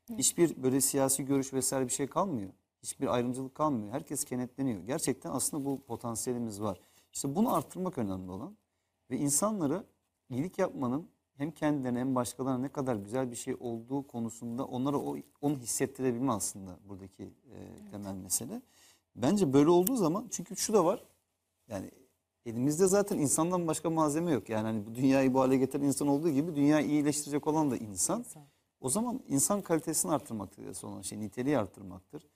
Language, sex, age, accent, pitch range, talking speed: Turkish, male, 40-59, native, 110-140 Hz, 160 wpm